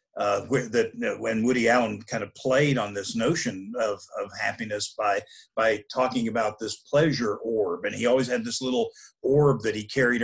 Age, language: 50-69, English